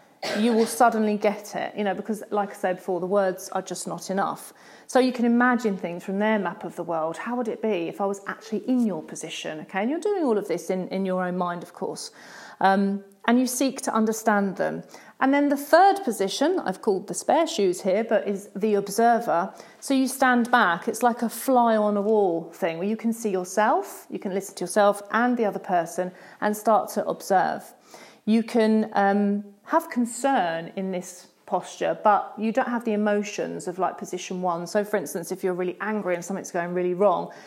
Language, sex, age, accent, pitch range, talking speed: English, female, 40-59, British, 190-240 Hz, 220 wpm